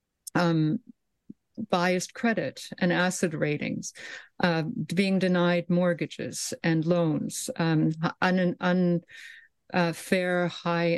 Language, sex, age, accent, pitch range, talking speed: English, female, 50-69, American, 165-195 Hz, 80 wpm